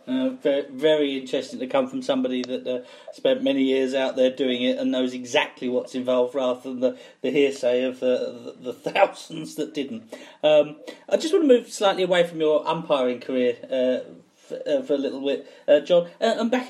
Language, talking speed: English, 210 wpm